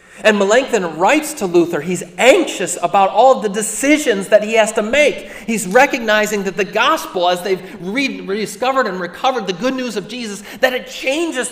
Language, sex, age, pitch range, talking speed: English, male, 40-59, 195-265 Hz, 180 wpm